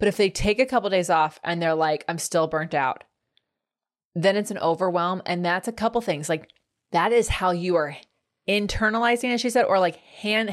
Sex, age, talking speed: female, 20-39, 210 wpm